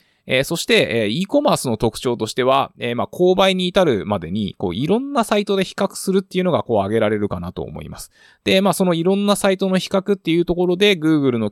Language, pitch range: Japanese, 110-175 Hz